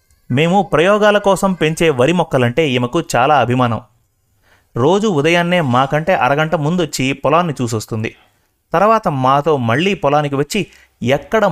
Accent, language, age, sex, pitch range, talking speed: native, Telugu, 30-49, male, 120-170 Hz, 120 wpm